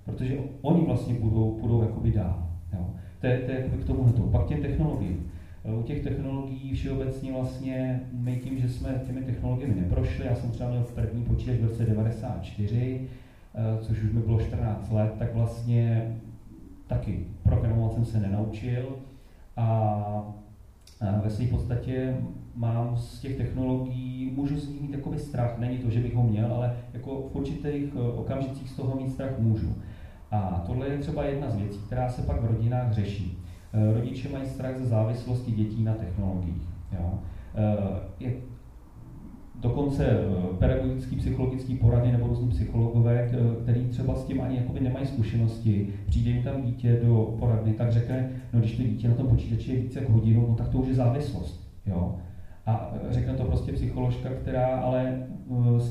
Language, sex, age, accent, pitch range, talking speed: Czech, male, 40-59, native, 110-130 Hz, 160 wpm